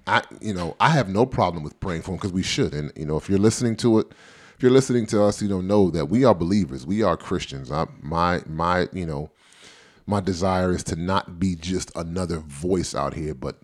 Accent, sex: American, male